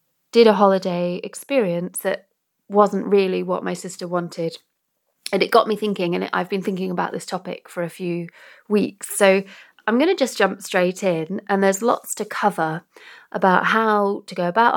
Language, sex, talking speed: English, female, 185 wpm